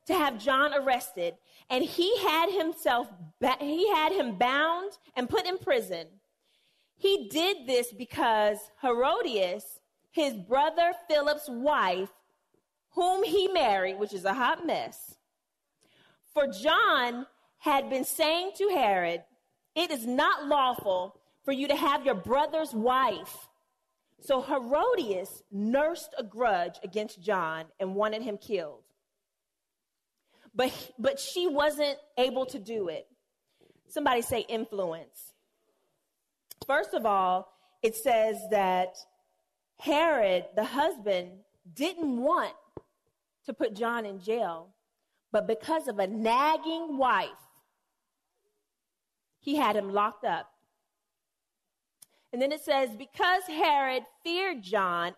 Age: 30-49